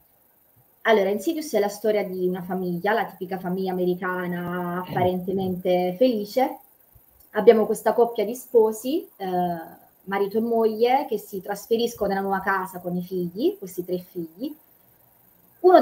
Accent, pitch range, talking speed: native, 180-225 Hz, 135 wpm